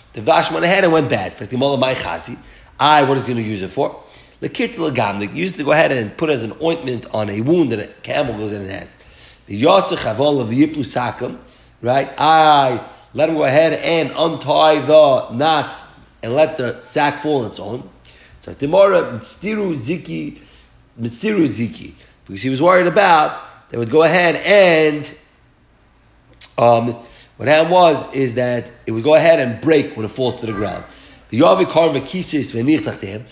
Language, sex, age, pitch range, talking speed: English, male, 40-59, 120-165 Hz, 175 wpm